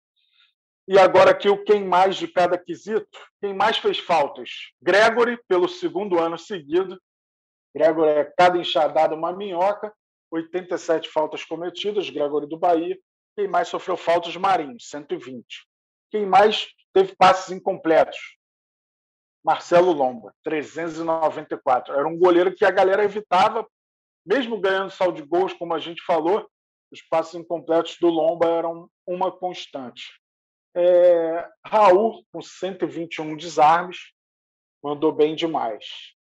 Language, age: Portuguese, 40-59